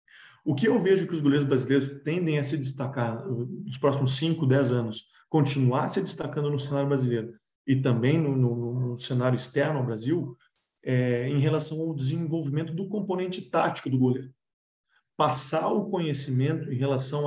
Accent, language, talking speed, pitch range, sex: Brazilian, Portuguese, 155 wpm, 130-170 Hz, male